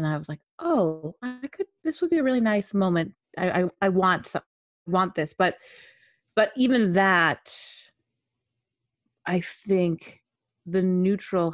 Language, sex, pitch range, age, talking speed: English, female, 165-210 Hz, 30-49, 150 wpm